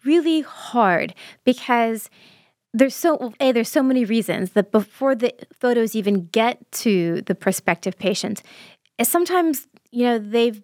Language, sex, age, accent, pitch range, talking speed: English, female, 30-49, American, 185-240 Hz, 135 wpm